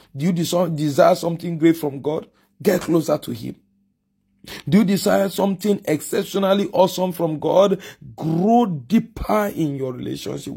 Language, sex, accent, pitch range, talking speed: English, male, Nigerian, 150-205 Hz, 135 wpm